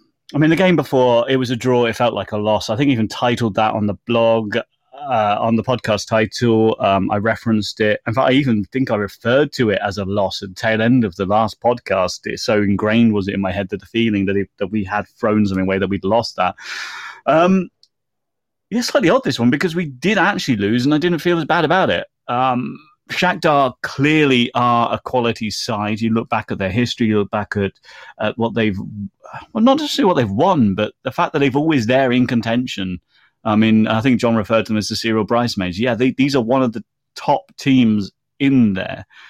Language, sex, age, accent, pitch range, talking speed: English, male, 30-49, British, 105-130 Hz, 230 wpm